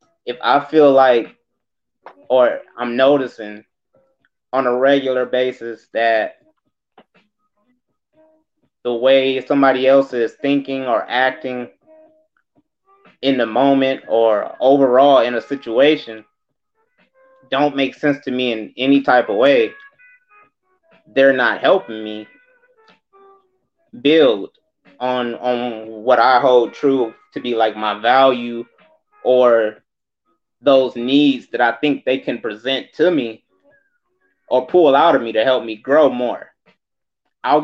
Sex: male